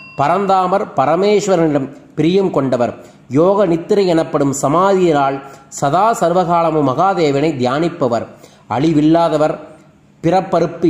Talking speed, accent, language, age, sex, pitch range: 75 wpm, native, Tamil, 30-49, male, 140-180 Hz